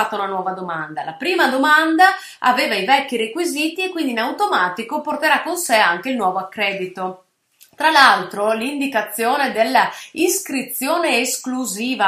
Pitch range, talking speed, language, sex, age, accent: 200-305 Hz, 130 wpm, Italian, female, 30-49, native